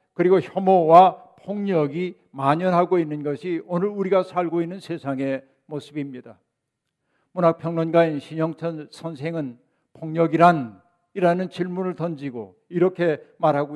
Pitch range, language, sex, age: 155-185 Hz, Korean, male, 50-69